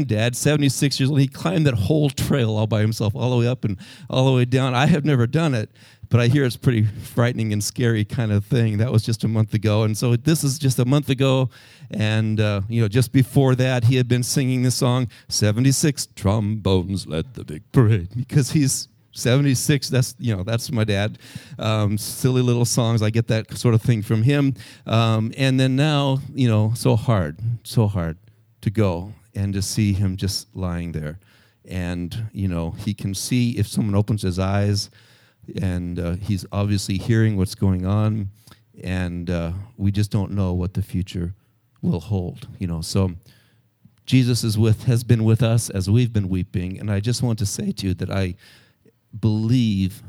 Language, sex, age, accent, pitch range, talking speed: English, male, 50-69, American, 100-125 Hz, 200 wpm